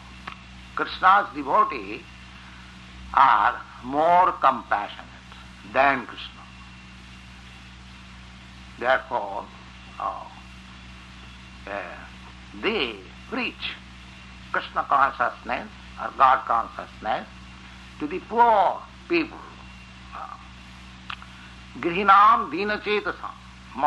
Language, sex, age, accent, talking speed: English, male, 60-79, Indian, 45 wpm